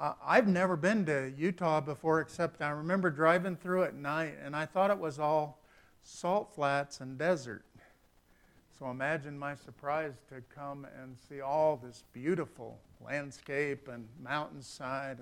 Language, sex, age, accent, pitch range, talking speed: English, male, 50-69, American, 130-165 Hz, 145 wpm